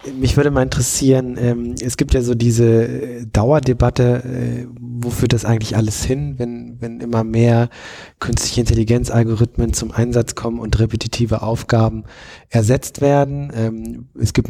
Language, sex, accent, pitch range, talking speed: German, male, German, 110-125 Hz, 145 wpm